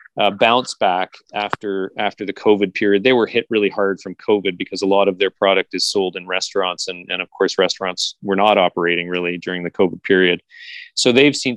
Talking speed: 215 wpm